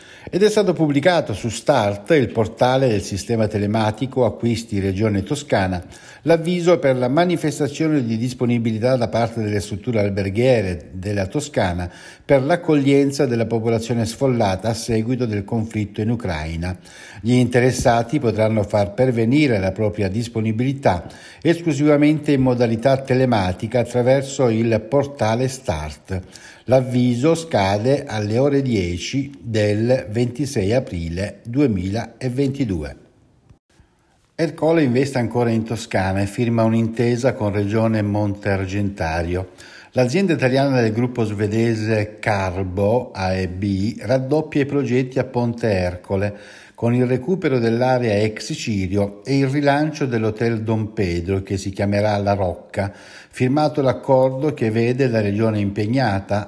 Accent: native